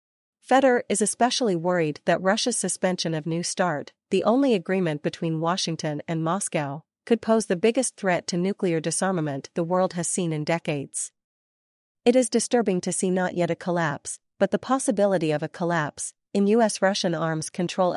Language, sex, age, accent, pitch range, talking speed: English, female, 40-59, American, 165-195 Hz, 165 wpm